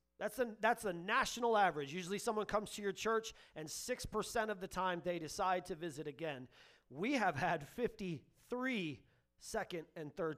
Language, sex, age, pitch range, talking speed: English, male, 30-49, 190-285 Hz, 170 wpm